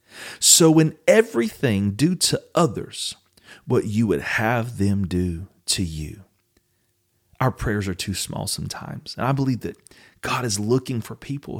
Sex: male